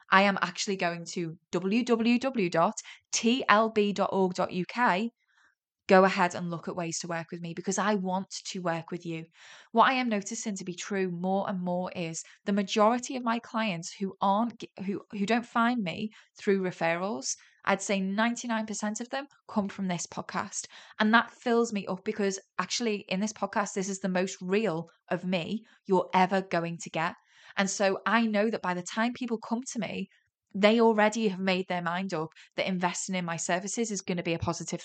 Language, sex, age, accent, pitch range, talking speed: English, female, 20-39, British, 180-220 Hz, 185 wpm